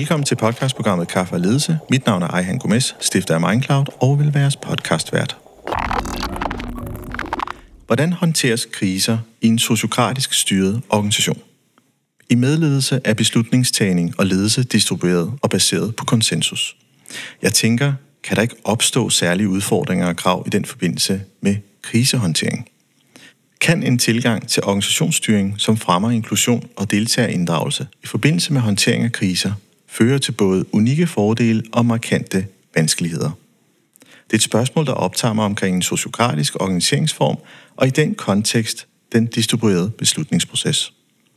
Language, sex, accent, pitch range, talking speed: Danish, male, native, 100-125 Hz, 140 wpm